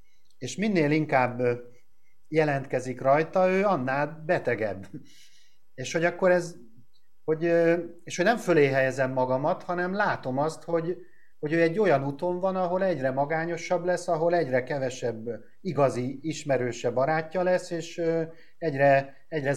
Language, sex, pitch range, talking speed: Hungarian, male, 130-170 Hz, 130 wpm